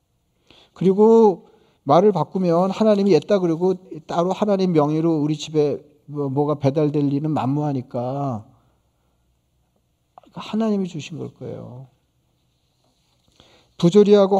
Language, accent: Korean, native